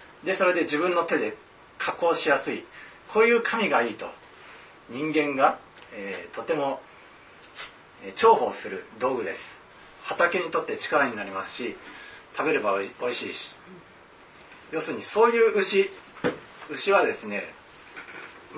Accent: native